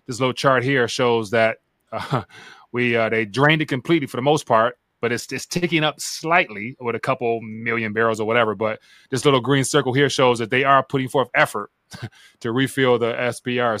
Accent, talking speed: American, 205 wpm